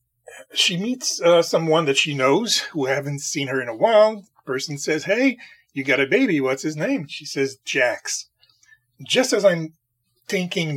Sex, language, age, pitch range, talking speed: male, English, 30-49, 145-210 Hz, 180 wpm